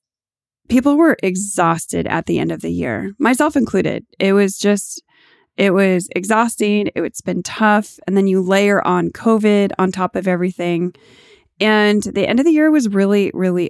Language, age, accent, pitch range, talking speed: English, 20-39, American, 180-225 Hz, 170 wpm